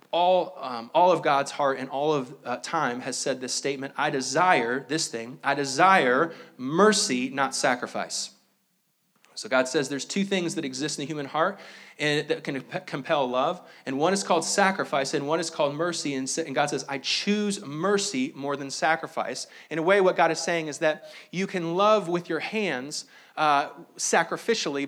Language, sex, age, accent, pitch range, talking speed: English, male, 30-49, American, 145-185 Hz, 190 wpm